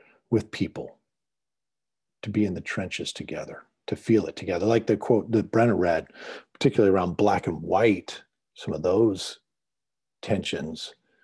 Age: 50-69